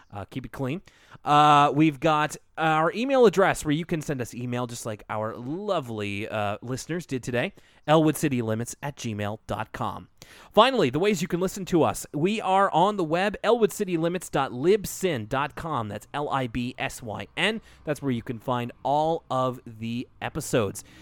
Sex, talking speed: male, 150 wpm